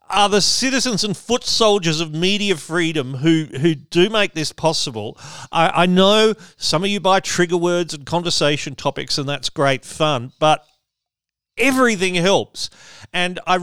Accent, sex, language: Australian, male, English